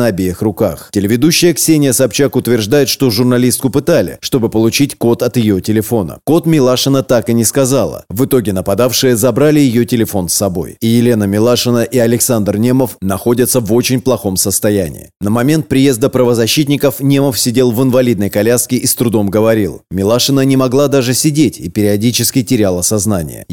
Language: Russian